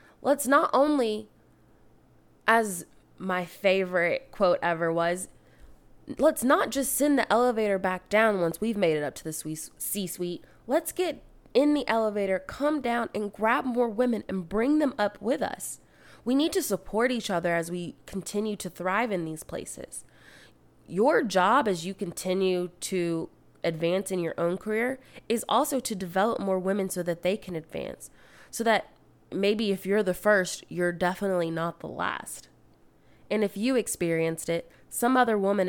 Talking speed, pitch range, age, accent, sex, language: 165 wpm, 180-230 Hz, 20-39, American, female, English